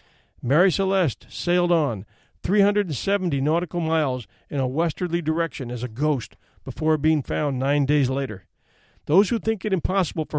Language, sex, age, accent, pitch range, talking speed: English, male, 50-69, American, 130-175 Hz, 150 wpm